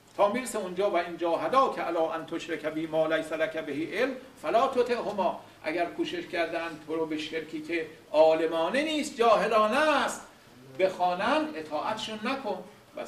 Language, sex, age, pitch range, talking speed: English, male, 50-69, 180-265 Hz, 145 wpm